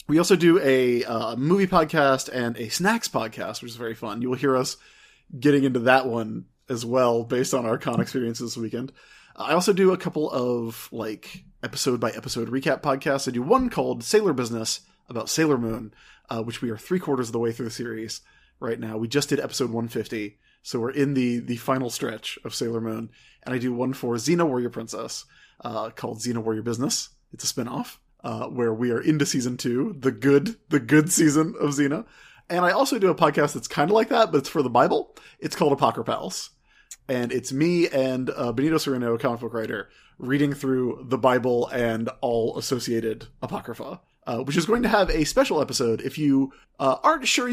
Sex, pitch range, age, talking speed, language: male, 120-155 Hz, 30-49, 200 wpm, English